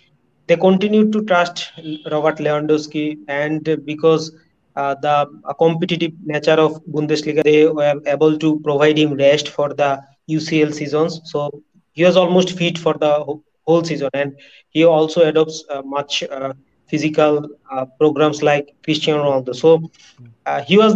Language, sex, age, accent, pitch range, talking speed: English, male, 30-49, Indian, 145-165 Hz, 150 wpm